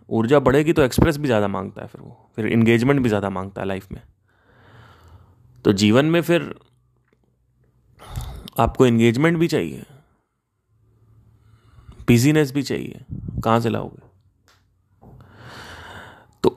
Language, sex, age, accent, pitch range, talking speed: Hindi, male, 30-49, native, 115-155 Hz, 120 wpm